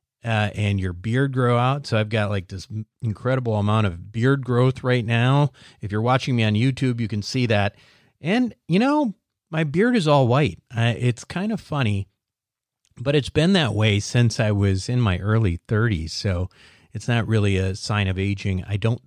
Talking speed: 200 wpm